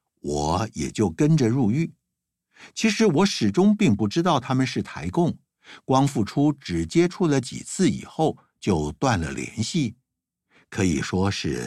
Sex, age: male, 60-79